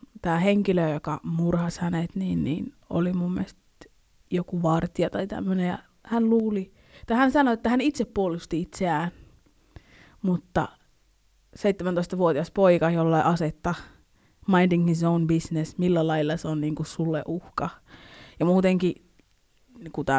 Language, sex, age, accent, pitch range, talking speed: Finnish, female, 20-39, native, 160-180 Hz, 135 wpm